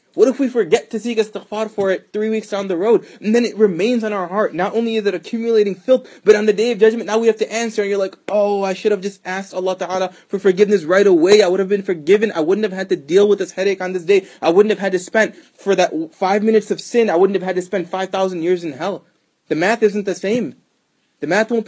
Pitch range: 170-220 Hz